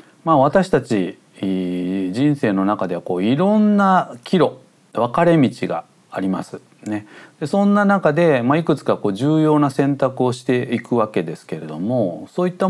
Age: 40-59